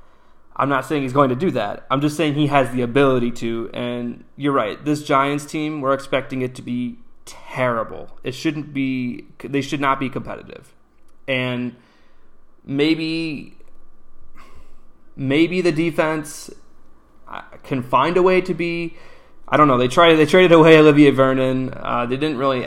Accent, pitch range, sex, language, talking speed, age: American, 120-150 Hz, male, English, 160 wpm, 20-39